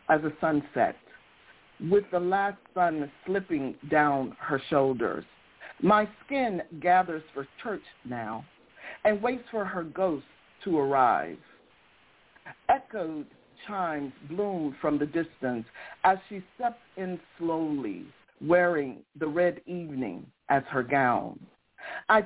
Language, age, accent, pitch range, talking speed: English, 50-69, American, 150-210 Hz, 115 wpm